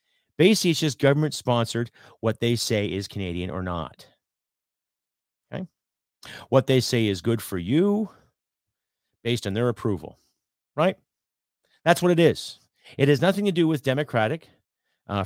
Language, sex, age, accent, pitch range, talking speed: English, male, 40-59, American, 95-130 Hz, 145 wpm